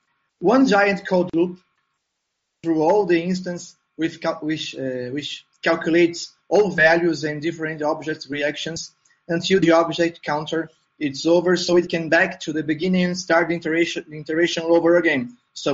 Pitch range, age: 150-180 Hz, 20-39